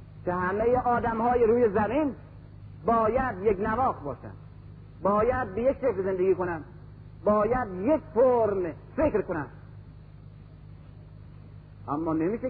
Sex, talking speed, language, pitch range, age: male, 105 wpm, Persian, 205-255 Hz, 40-59